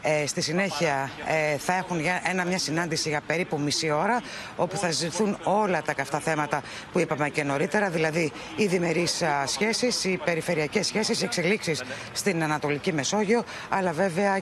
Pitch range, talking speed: 155-205 Hz, 160 wpm